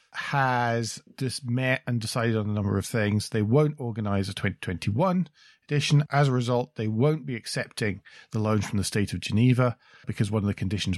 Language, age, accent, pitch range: English, 40-59, British, 105-135 Hz